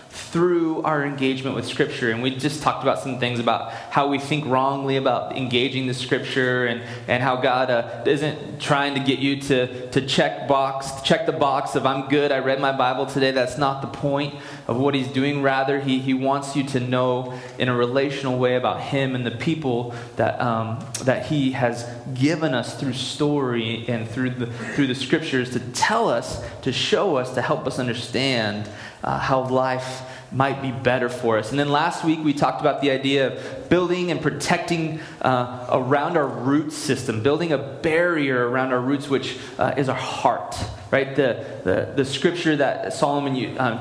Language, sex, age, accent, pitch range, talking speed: English, male, 20-39, American, 125-145 Hz, 190 wpm